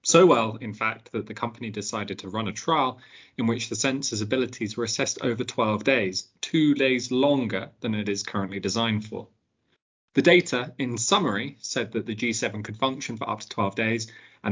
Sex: male